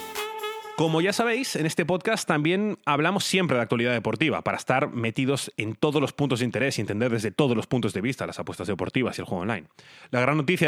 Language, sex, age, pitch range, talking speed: Spanish, male, 30-49, 115-160 Hz, 220 wpm